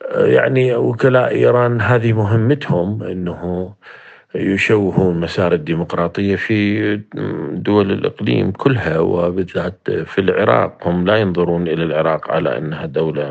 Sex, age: male, 50-69